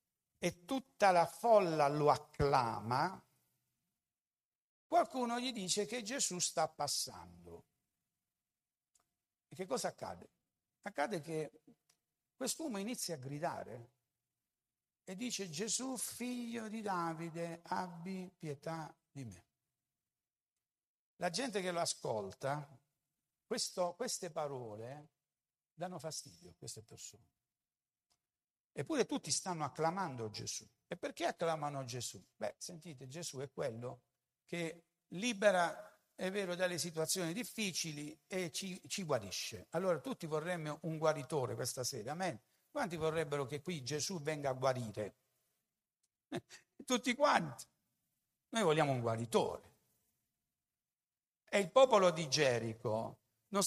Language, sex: Italian, male